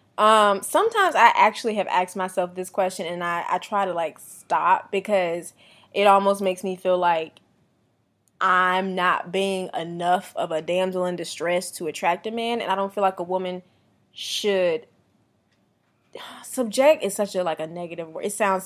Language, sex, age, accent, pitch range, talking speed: English, female, 20-39, American, 180-235 Hz, 175 wpm